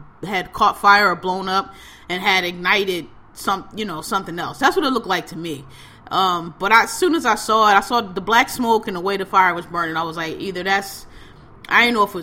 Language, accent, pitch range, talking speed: English, American, 160-215 Hz, 250 wpm